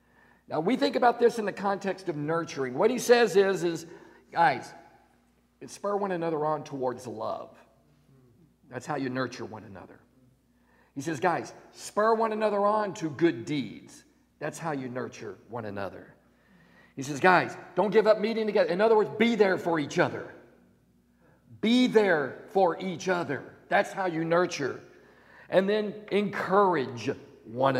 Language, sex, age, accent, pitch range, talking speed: English, male, 50-69, American, 165-240 Hz, 160 wpm